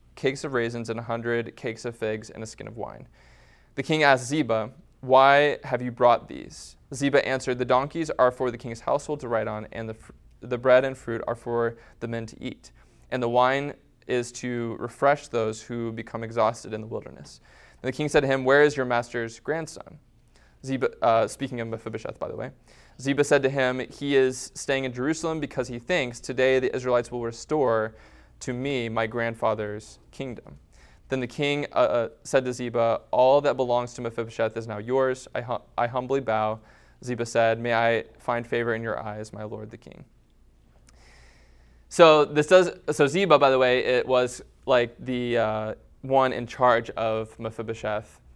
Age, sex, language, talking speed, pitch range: 20-39, male, English, 185 wpm, 110-130 Hz